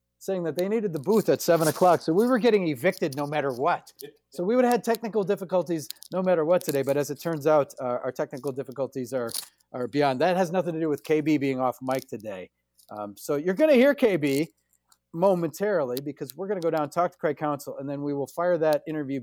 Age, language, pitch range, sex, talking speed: 30-49, English, 130-175 Hz, male, 240 wpm